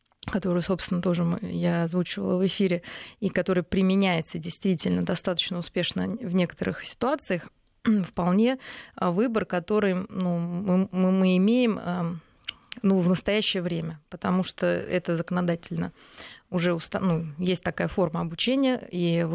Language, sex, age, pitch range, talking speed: Russian, female, 20-39, 170-195 Hz, 125 wpm